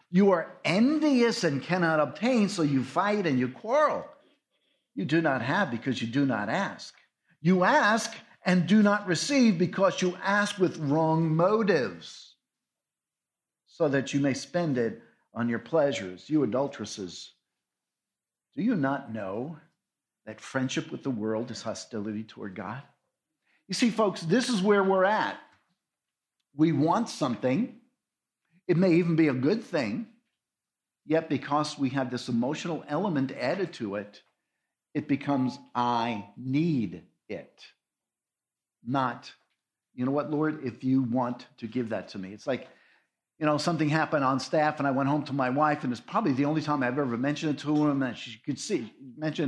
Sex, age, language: male, 50-69, English